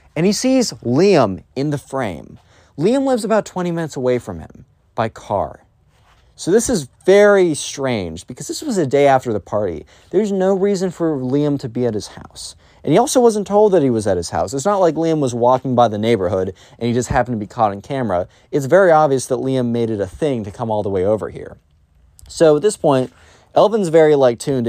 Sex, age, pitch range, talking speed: male, 30-49, 105-160 Hz, 225 wpm